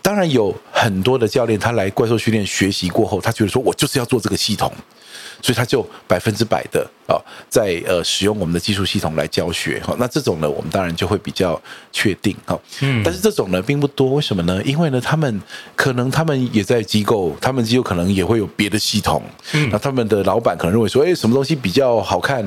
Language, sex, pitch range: Chinese, male, 95-135 Hz